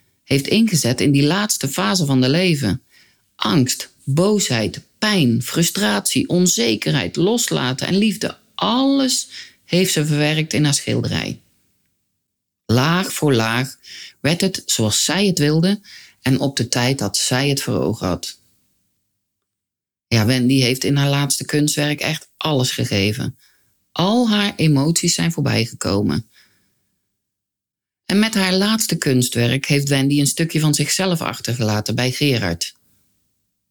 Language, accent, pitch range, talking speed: Dutch, Dutch, 105-155 Hz, 130 wpm